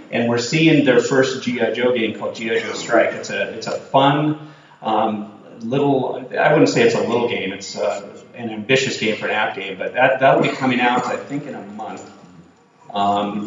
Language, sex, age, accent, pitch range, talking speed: English, male, 30-49, American, 110-140 Hz, 210 wpm